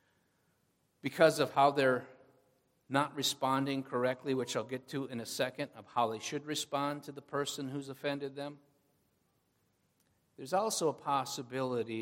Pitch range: 125-165 Hz